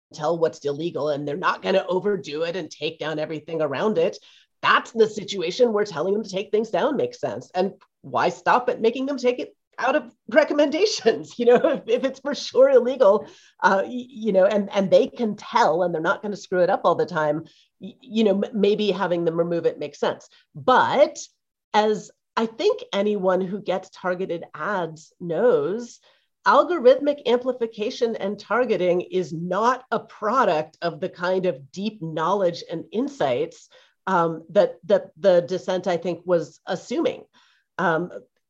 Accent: American